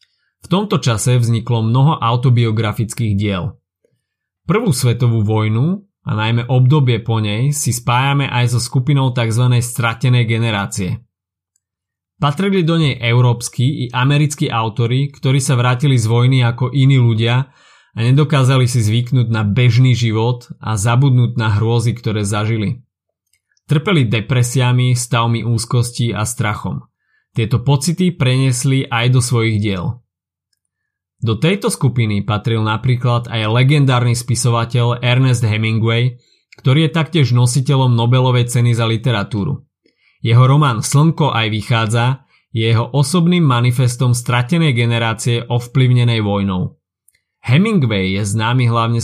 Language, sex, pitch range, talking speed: Slovak, male, 115-135 Hz, 120 wpm